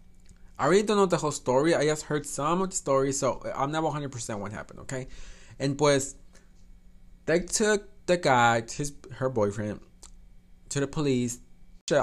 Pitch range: 105-145 Hz